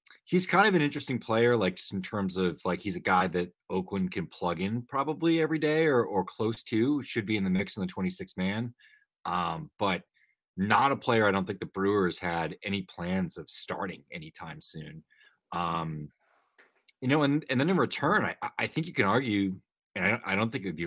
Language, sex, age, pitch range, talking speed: English, male, 30-49, 90-120 Hz, 215 wpm